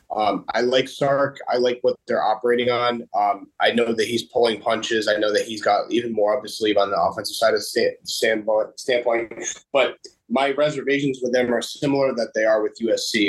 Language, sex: English, male